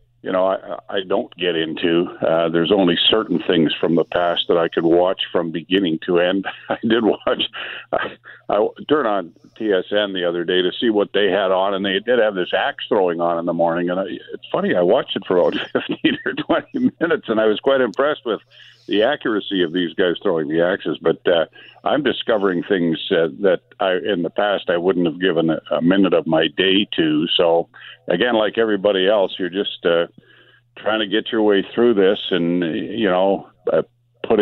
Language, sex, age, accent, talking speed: English, male, 50-69, American, 205 wpm